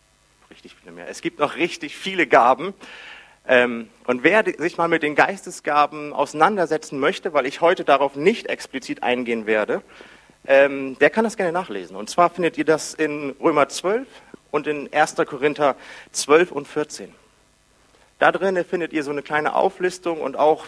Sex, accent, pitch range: male, German, 130-165 Hz